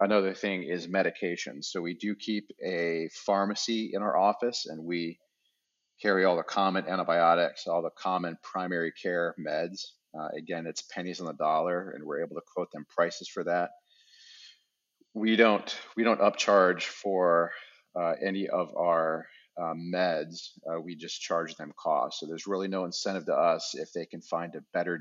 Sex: male